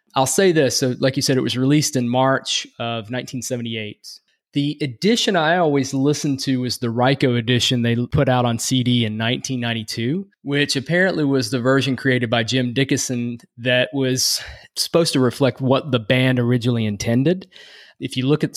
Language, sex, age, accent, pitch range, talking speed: English, male, 20-39, American, 115-140 Hz, 175 wpm